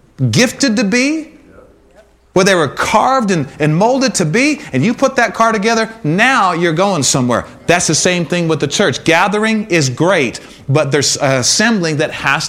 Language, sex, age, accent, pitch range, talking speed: English, male, 30-49, American, 165-270 Hz, 180 wpm